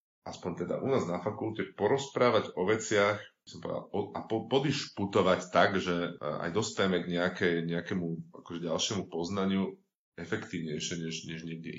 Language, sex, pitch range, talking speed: Slovak, male, 85-115 Hz, 150 wpm